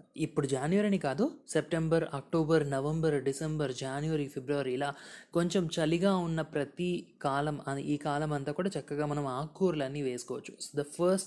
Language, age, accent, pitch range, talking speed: Telugu, 20-39, native, 140-185 Hz, 130 wpm